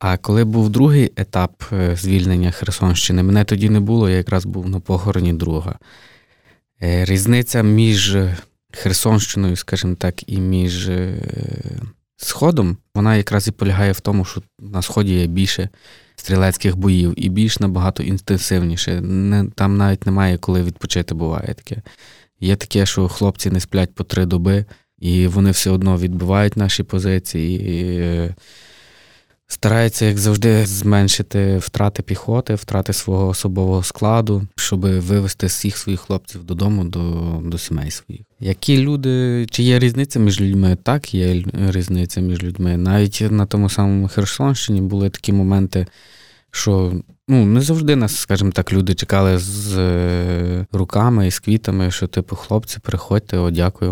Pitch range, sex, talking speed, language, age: 90-105 Hz, male, 140 wpm, Ukrainian, 20-39